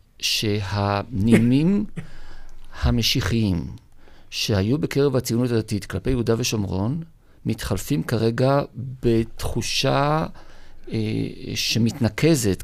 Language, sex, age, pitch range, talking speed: Hebrew, male, 50-69, 105-125 Hz, 65 wpm